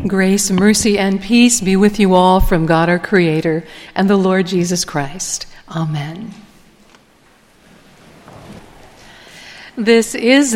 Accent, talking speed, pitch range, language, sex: American, 115 wpm, 185-225 Hz, English, female